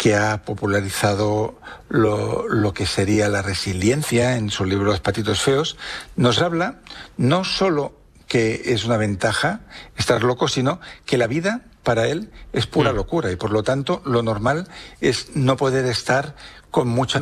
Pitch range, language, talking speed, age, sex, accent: 105-140 Hz, Spanish, 155 wpm, 60-79, male, Spanish